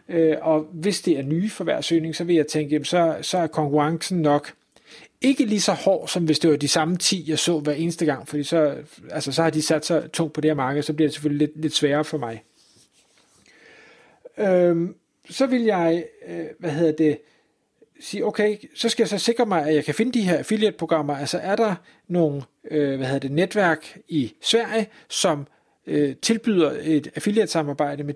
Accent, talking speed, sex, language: native, 195 wpm, male, Danish